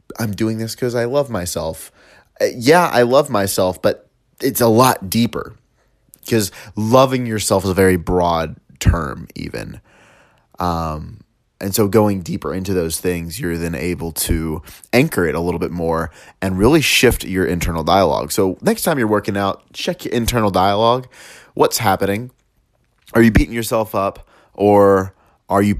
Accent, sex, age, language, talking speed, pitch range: American, male, 30-49, English, 160 wpm, 85-105 Hz